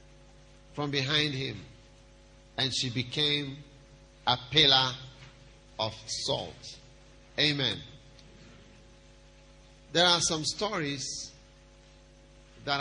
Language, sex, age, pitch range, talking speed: English, male, 50-69, 115-140 Hz, 75 wpm